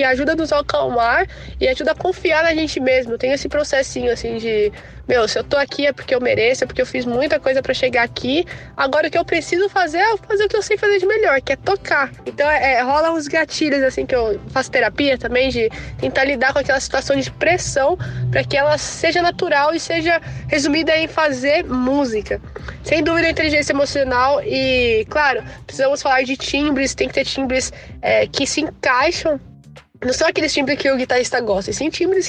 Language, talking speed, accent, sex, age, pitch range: Portuguese, 210 wpm, Brazilian, female, 20-39, 255-325 Hz